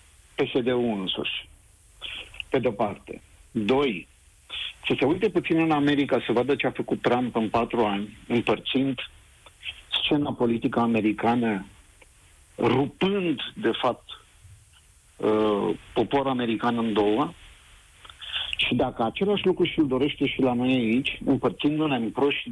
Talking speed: 115 wpm